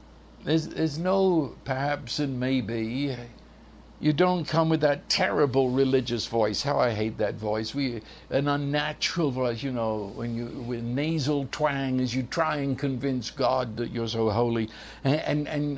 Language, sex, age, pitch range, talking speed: English, male, 60-79, 130-175 Hz, 160 wpm